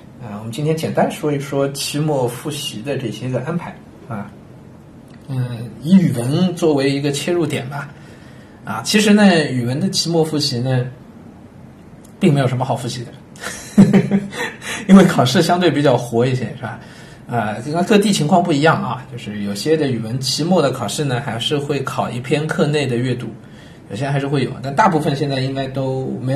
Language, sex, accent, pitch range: Chinese, male, native, 120-155 Hz